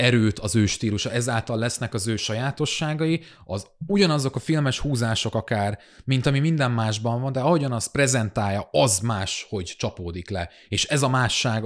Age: 30-49